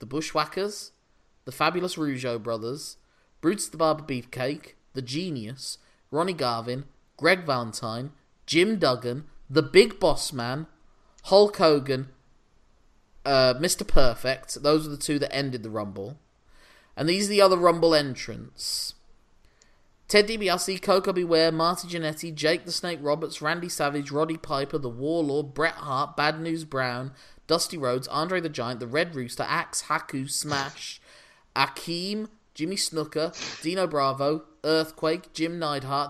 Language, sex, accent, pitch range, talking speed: English, male, British, 130-170 Hz, 135 wpm